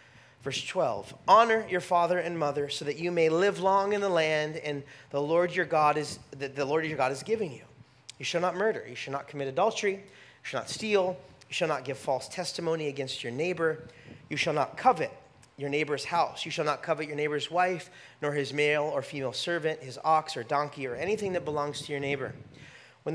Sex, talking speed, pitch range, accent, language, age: male, 220 wpm, 145-190 Hz, American, English, 30-49